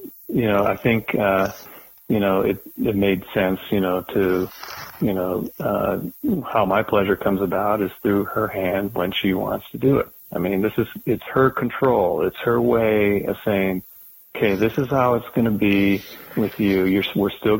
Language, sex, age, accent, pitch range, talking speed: English, male, 40-59, American, 105-125 Hz, 195 wpm